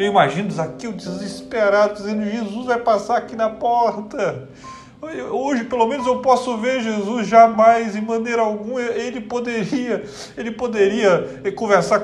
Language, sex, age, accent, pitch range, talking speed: Portuguese, male, 40-59, Brazilian, 180-235 Hz, 130 wpm